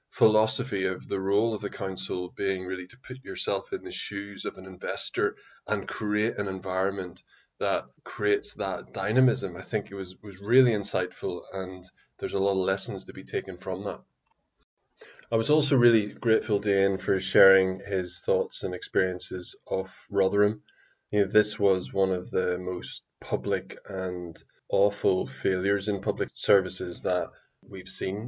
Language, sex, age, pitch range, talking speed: English, male, 20-39, 95-110 Hz, 165 wpm